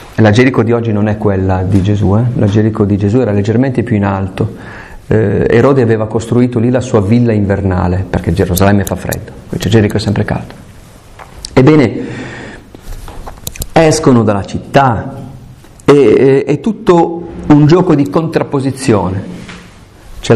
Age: 40-59